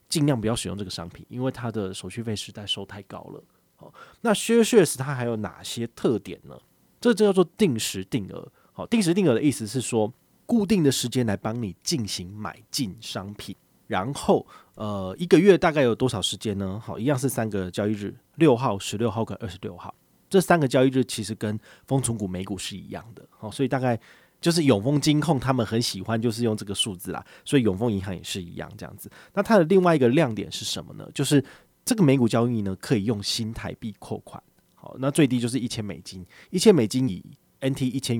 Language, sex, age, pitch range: Chinese, male, 30-49, 100-135 Hz